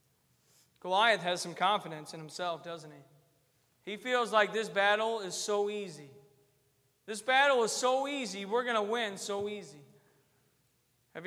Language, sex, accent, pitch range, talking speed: English, male, American, 160-215 Hz, 150 wpm